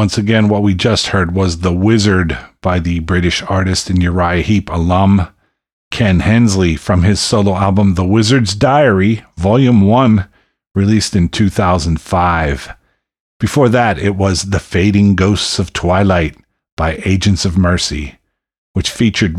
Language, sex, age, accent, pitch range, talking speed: English, male, 40-59, American, 85-110 Hz, 140 wpm